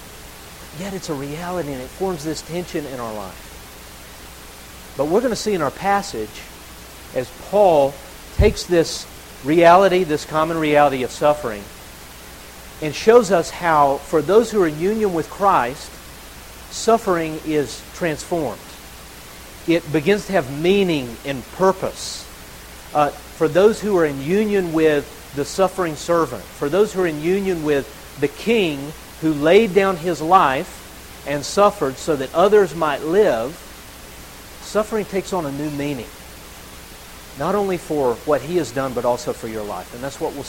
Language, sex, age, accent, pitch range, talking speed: English, male, 50-69, American, 115-175 Hz, 155 wpm